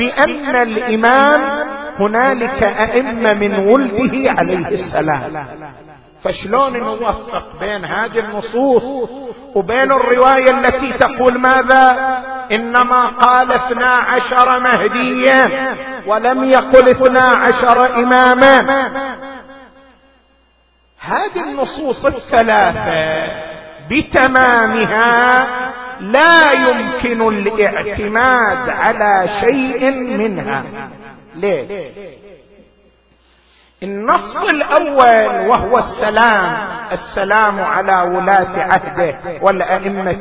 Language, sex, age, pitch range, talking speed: Arabic, male, 50-69, 210-265 Hz, 70 wpm